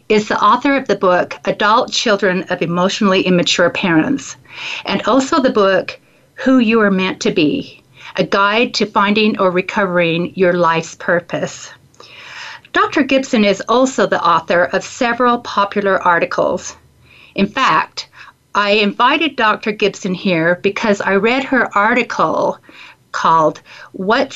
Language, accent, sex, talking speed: English, American, female, 135 wpm